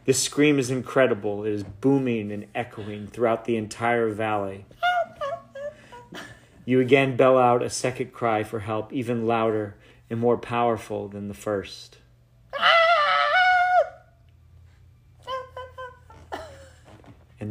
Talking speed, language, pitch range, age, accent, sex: 105 wpm, English, 95-120 Hz, 40-59, American, male